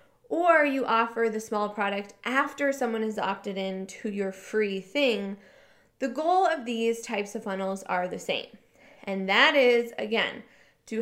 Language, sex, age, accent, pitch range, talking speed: English, female, 20-39, American, 200-260 Hz, 165 wpm